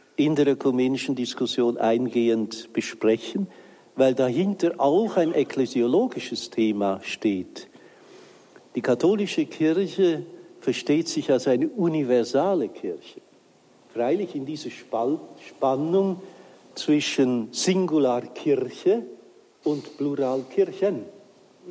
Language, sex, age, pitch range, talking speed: German, male, 60-79, 125-175 Hz, 85 wpm